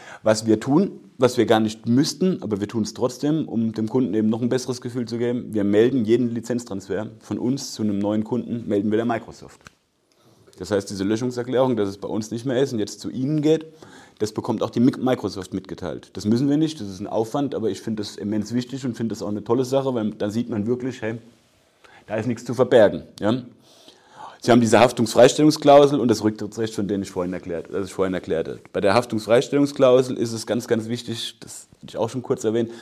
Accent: German